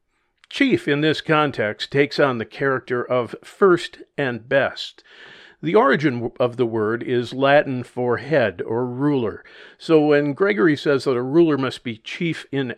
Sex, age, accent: male, 50-69, American